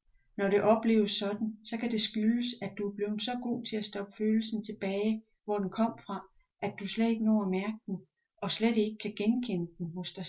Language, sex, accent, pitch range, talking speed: Danish, female, native, 200-235 Hz, 225 wpm